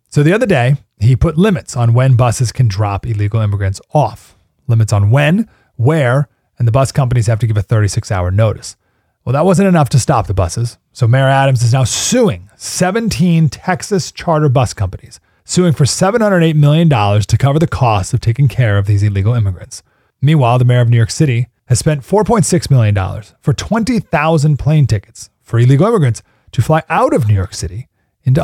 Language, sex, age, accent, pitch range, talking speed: English, male, 30-49, American, 105-150 Hz, 190 wpm